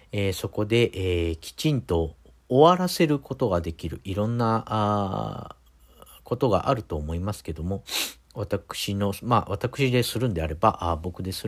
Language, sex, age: Japanese, male, 50-69